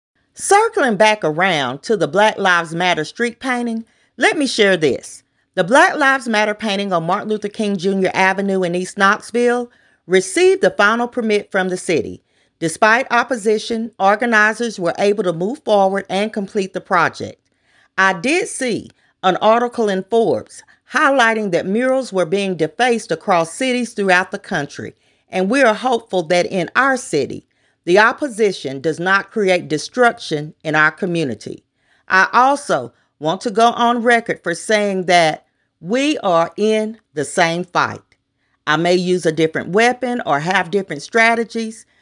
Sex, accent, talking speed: female, American, 155 wpm